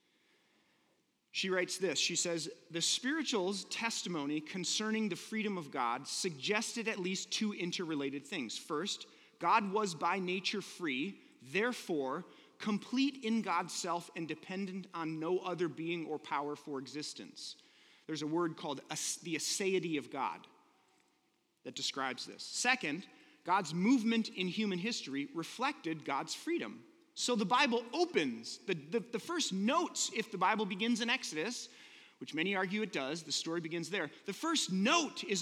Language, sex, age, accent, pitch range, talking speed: English, male, 30-49, American, 180-255 Hz, 150 wpm